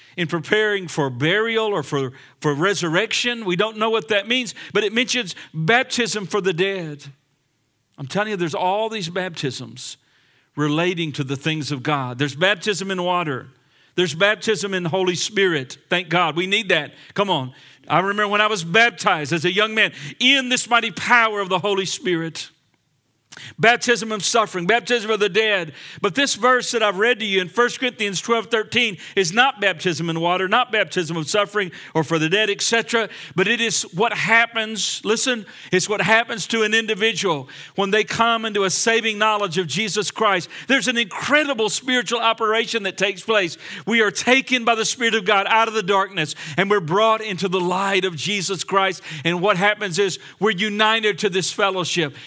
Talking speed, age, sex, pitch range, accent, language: 185 wpm, 50-69, male, 170-220 Hz, American, English